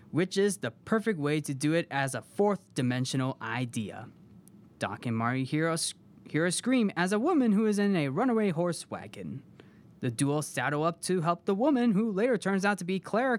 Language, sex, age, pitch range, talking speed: English, male, 20-39, 140-205 Hz, 195 wpm